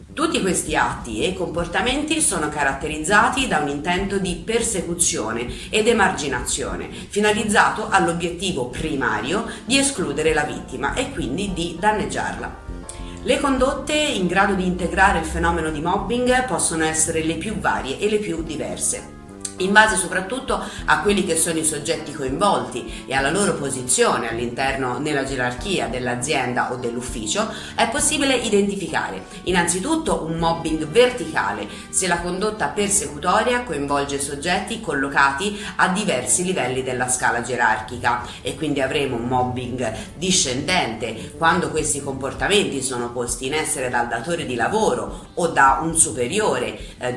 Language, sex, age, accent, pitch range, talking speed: Italian, female, 40-59, native, 130-195 Hz, 135 wpm